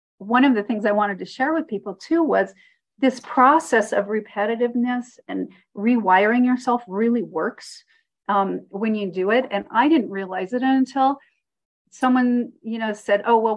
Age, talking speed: 40-59, 170 wpm